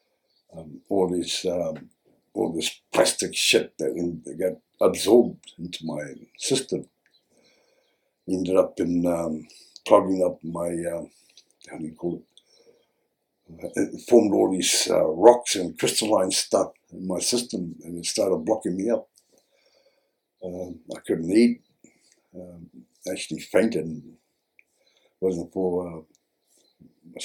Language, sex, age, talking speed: English, male, 60-79, 130 wpm